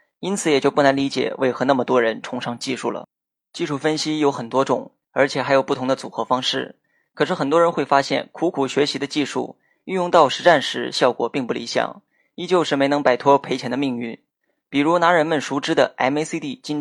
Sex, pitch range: male, 130-155 Hz